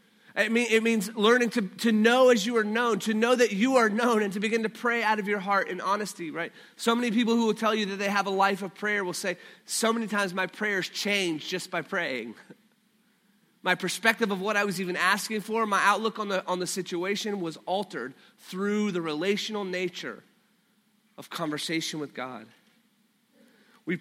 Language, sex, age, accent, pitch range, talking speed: English, male, 30-49, American, 180-220 Hz, 205 wpm